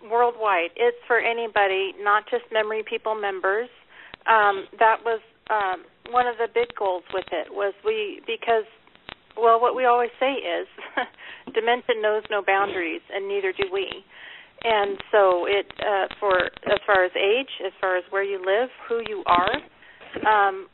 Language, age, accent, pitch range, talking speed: English, 40-59, American, 195-235 Hz, 160 wpm